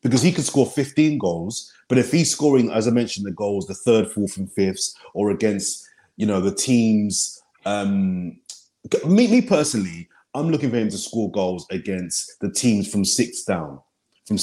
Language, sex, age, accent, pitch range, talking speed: English, male, 30-49, British, 95-120 Hz, 185 wpm